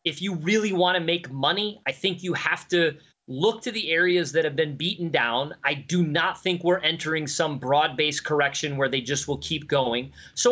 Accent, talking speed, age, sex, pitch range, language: American, 210 wpm, 30-49, male, 145-180 Hz, English